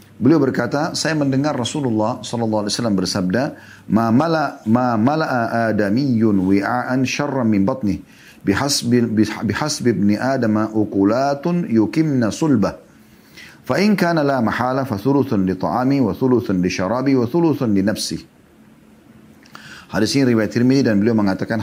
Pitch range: 105-135 Hz